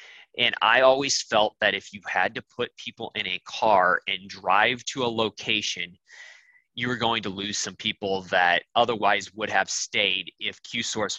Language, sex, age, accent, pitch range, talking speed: English, male, 20-39, American, 100-120 Hz, 175 wpm